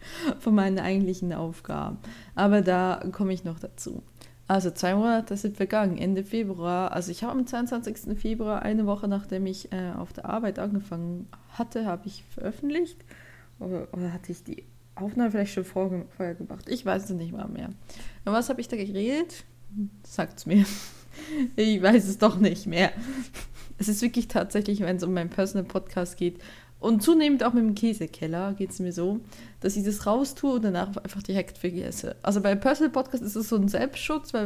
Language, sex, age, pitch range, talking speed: German, female, 20-39, 180-225 Hz, 180 wpm